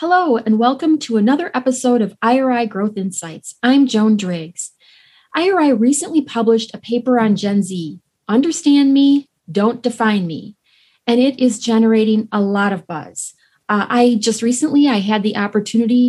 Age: 30-49